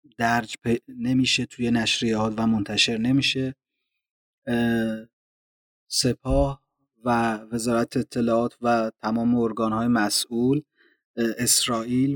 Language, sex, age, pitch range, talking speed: Persian, male, 30-49, 110-120 Hz, 85 wpm